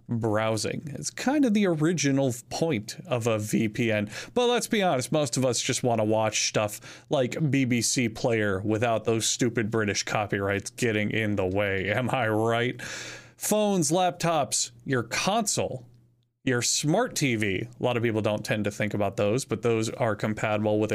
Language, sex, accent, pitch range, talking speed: English, male, American, 110-145 Hz, 170 wpm